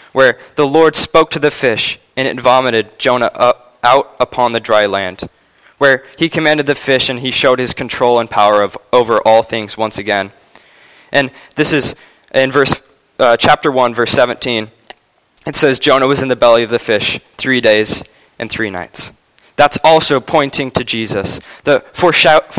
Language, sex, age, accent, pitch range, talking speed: English, male, 20-39, American, 115-145 Hz, 180 wpm